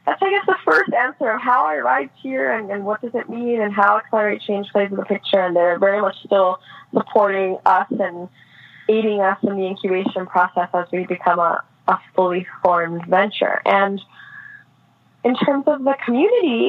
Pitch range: 195-250 Hz